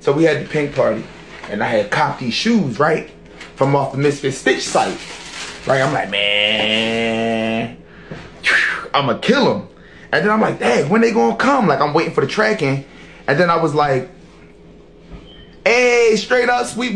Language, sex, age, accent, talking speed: English, male, 20-39, American, 180 wpm